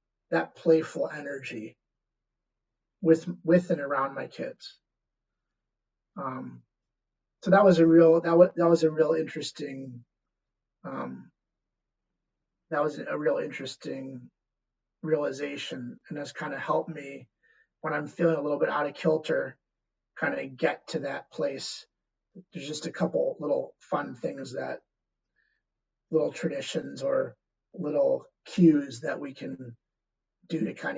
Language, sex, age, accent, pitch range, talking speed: English, male, 30-49, American, 135-170 Hz, 135 wpm